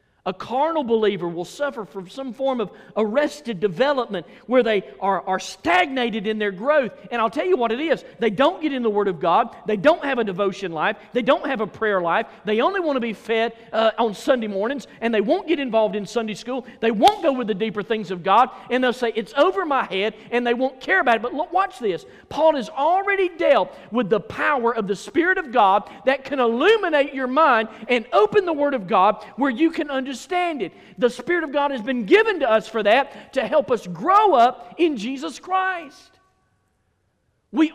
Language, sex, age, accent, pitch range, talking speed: English, male, 40-59, American, 165-265 Hz, 220 wpm